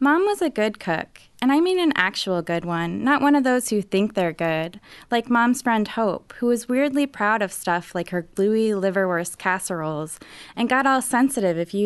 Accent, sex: American, female